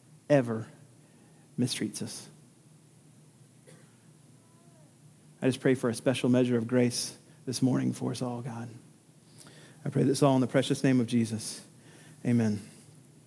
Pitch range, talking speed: 135-160 Hz, 130 wpm